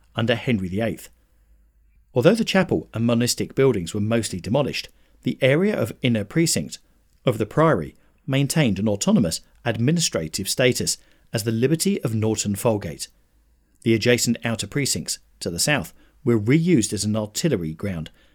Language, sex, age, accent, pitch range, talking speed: English, male, 40-59, British, 95-135 Hz, 145 wpm